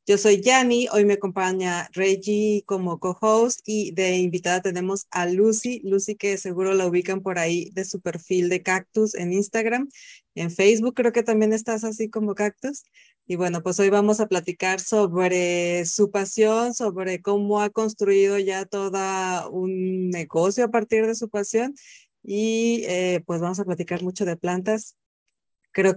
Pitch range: 185-220 Hz